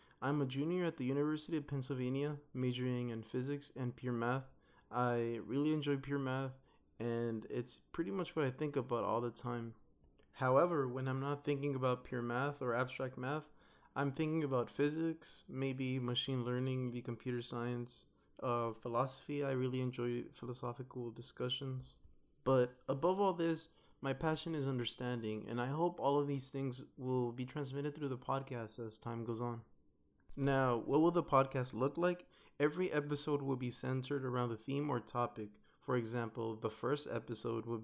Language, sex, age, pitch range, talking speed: English, male, 20-39, 120-145 Hz, 170 wpm